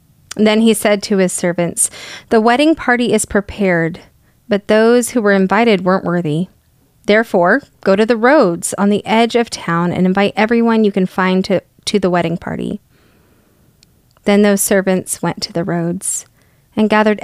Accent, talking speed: American, 165 wpm